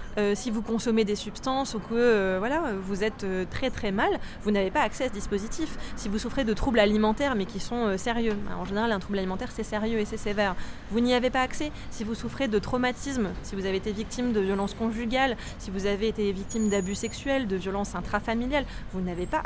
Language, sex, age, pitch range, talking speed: French, female, 20-39, 195-240 Hz, 235 wpm